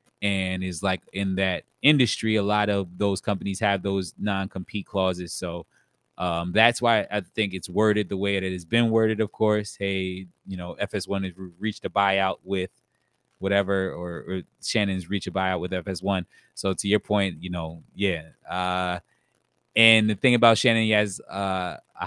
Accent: American